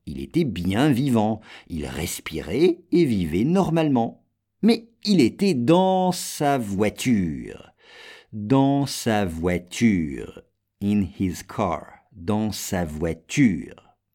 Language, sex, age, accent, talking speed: English, male, 50-69, French, 100 wpm